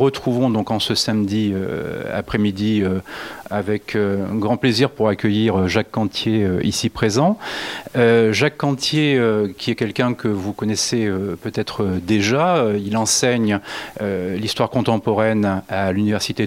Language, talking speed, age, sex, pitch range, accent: French, 150 wpm, 40-59, male, 100-125 Hz, French